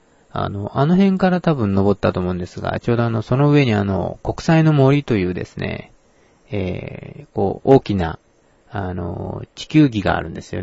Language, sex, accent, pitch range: Japanese, male, native, 95-120 Hz